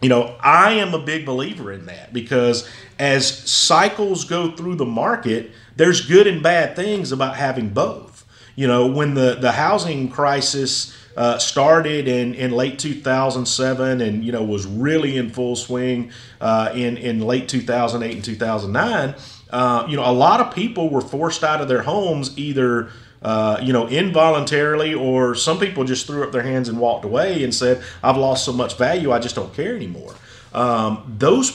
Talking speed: 175 wpm